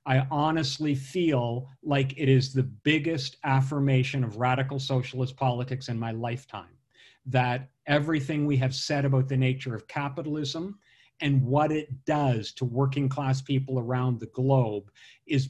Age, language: 50-69, English